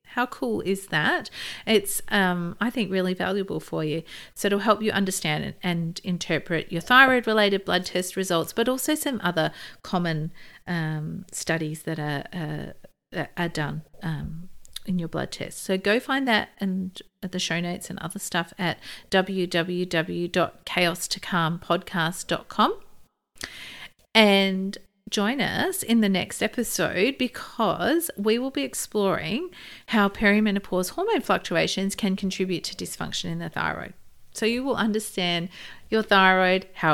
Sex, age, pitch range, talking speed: female, 50-69, 170-220 Hz, 140 wpm